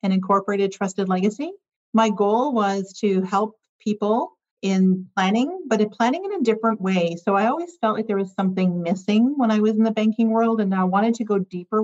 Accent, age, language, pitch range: American, 40-59, English, 175-220 Hz